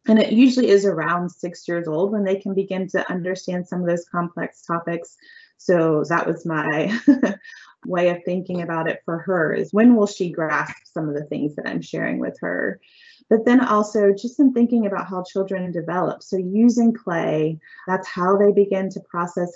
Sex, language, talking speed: female, English, 195 wpm